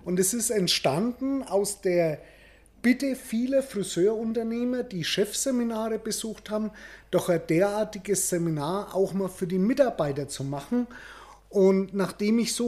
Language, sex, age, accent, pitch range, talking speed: German, male, 30-49, German, 165-220 Hz, 135 wpm